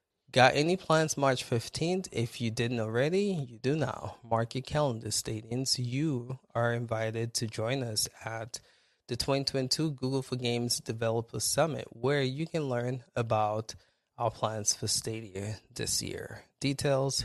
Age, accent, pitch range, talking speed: 20-39, American, 115-135 Hz, 145 wpm